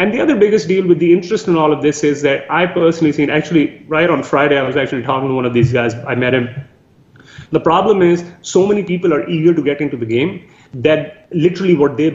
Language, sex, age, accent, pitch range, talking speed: English, male, 30-49, Indian, 125-155 Hz, 245 wpm